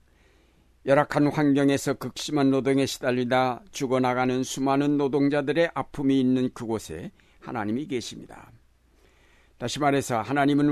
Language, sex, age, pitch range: Korean, male, 60-79, 120-145 Hz